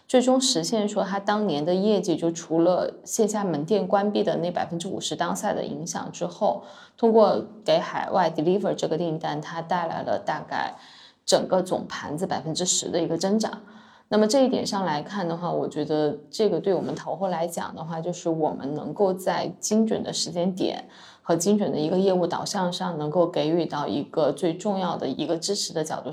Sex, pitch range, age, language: female, 165-205 Hz, 20-39, Chinese